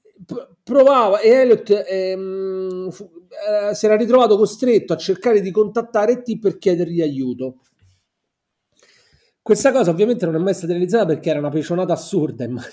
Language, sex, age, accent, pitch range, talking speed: Italian, male, 40-59, native, 175-235 Hz, 150 wpm